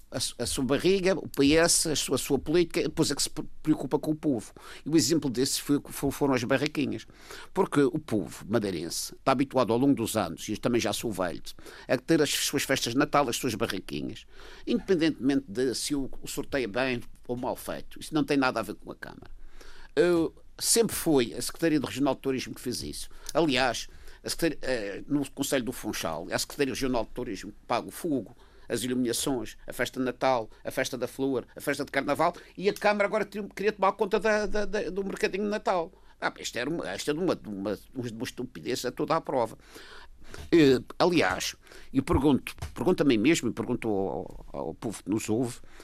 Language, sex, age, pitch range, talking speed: Portuguese, male, 50-69, 125-170 Hz, 200 wpm